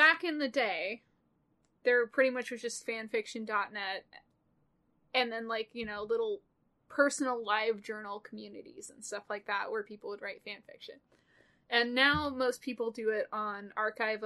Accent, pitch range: American, 210-260 Hz